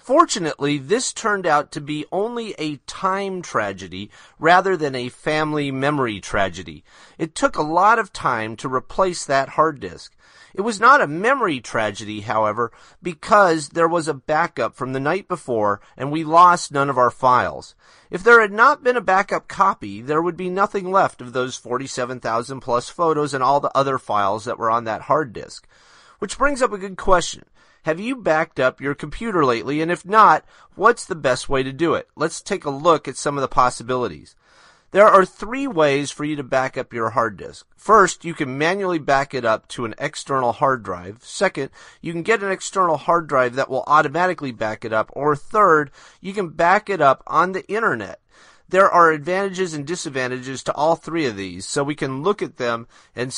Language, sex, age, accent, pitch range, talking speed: English, male, 30-49, American, 125-180 Hz, 200 wpm